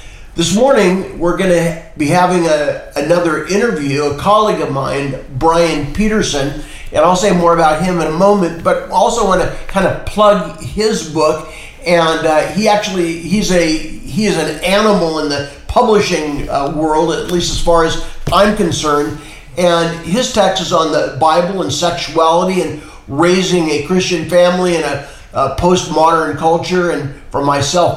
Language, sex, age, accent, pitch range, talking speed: English, male, 50-69, American, 140-175 Hz, 165 wpm